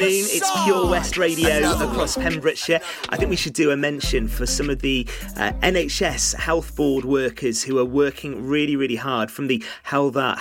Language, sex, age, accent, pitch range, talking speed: English, male, 30-49, British, 125-145 Hz, 185 wpm